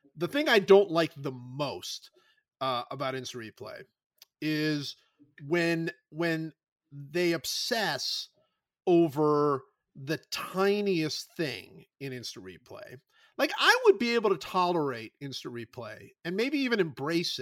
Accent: American